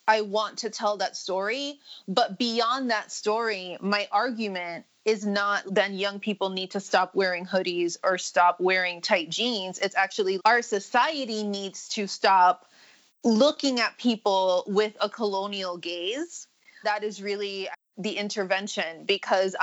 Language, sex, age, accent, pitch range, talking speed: English, female, 30-49, American, 190-215 Hz, 145 wpm